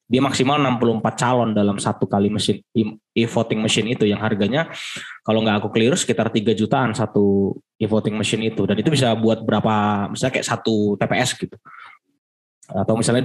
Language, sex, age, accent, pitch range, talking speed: Indonesian, male, 20-39, native, 110-135 Hz, 165 wpm